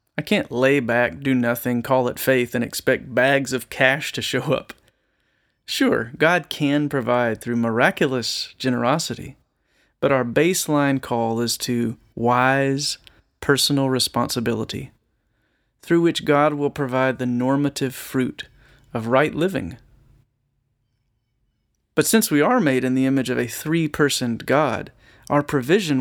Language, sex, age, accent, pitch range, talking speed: English, male, 30-49, American, 120-145 Hz, 135 wpm